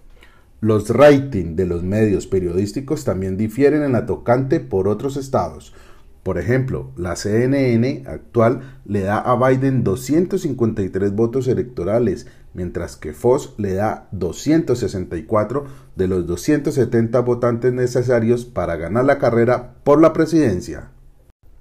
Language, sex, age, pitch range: Spanish, male, 40-59, 95-125 Hz